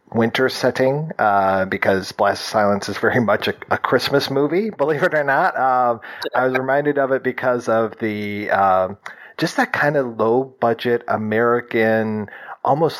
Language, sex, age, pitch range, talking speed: English, male, 40-59, 100-120 Hz, 160 wpm